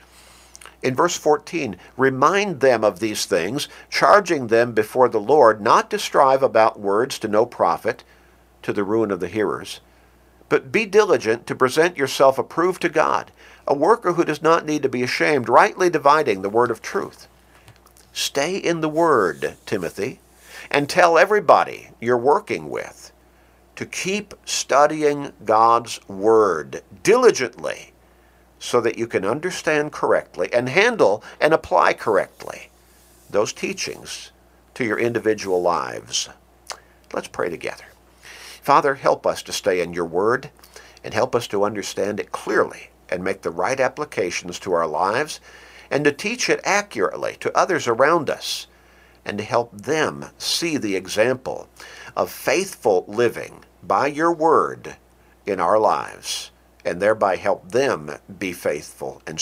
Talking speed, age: 145 wpm, 50-69